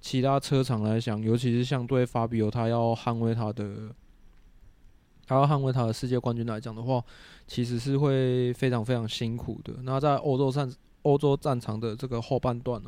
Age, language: 20-39, Chinese